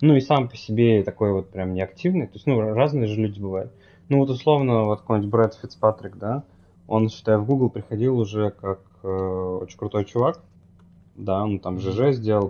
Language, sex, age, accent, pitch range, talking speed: Russian, male, 20-39, native, 95-115 Hz, 190 wpm